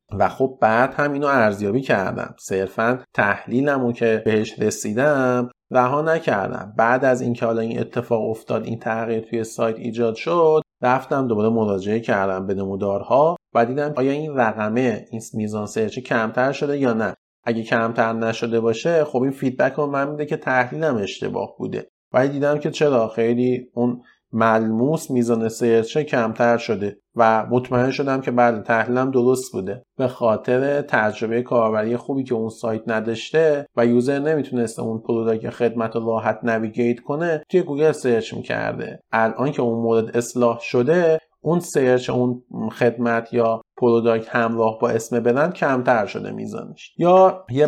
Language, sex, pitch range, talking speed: Persian, male, 115-135 Hz, 155 wpm